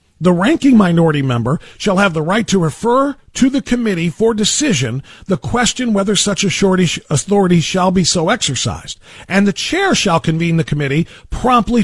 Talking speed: 170 wpm